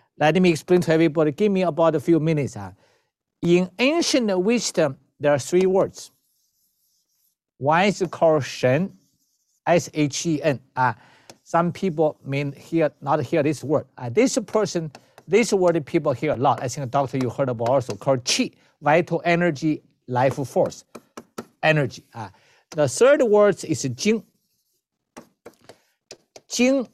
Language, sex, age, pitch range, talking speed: English, male, 50-69, 145-215 Hz, 145 wpm